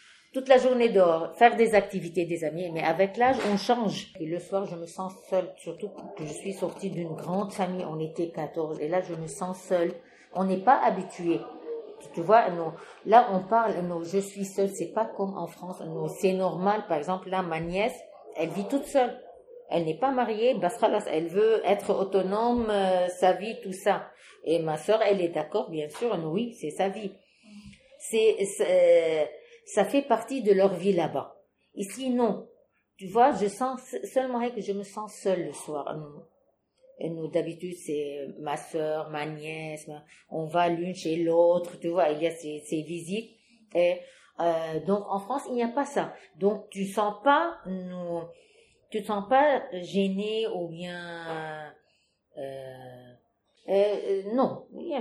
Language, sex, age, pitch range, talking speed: French, female, 50-69, 170-225 Hz, 175 wpm